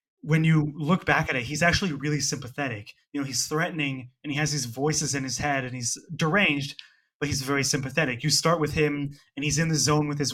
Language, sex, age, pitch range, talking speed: English, male, 20-39, 135-155 Hz, 230 wpm